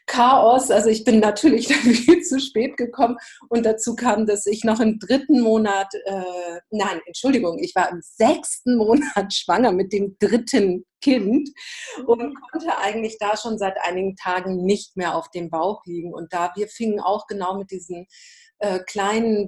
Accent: German